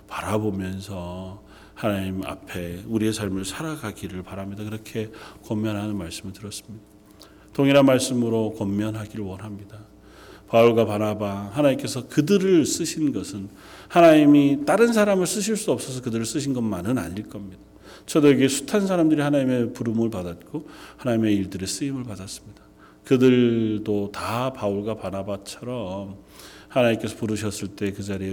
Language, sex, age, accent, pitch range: Korean, male, 40-59, native, 100-125 Hz